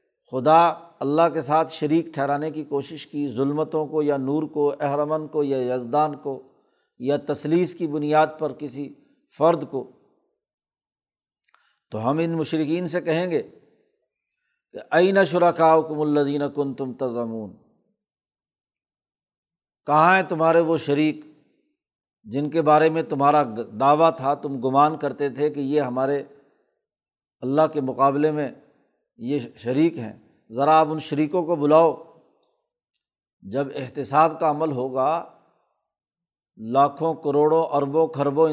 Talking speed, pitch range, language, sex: 130 wpm, 140-160 Hz, Urdu, male